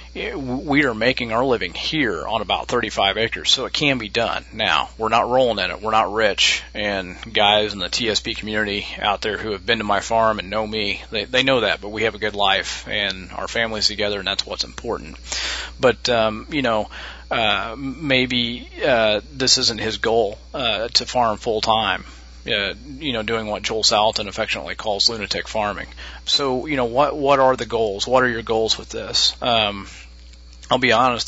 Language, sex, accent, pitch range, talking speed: French, male, American, 95-120 Hz, 200 wpm